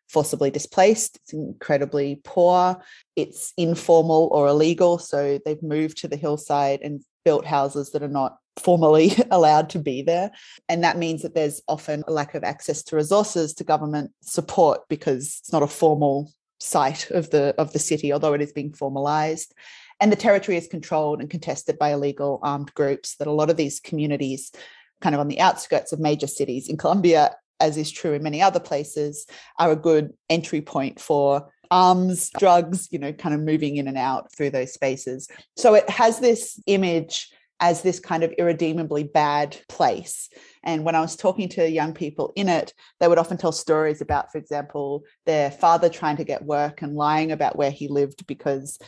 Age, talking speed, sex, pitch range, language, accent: 30-49, 190 wpm, female, 145-170 Hz, English, Australian